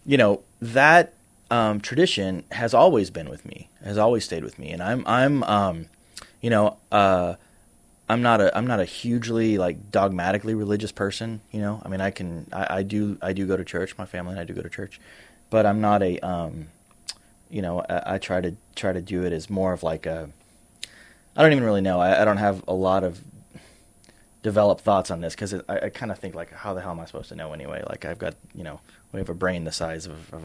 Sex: male